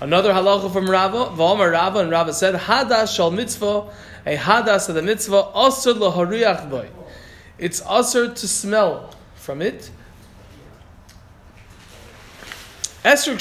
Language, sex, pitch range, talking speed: English, male, 160-215 Hz, 120 wpm